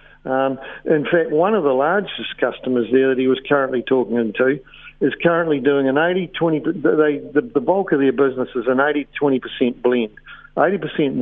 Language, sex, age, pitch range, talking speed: English, male, 50-69, 125-150 Hz, 165 wpm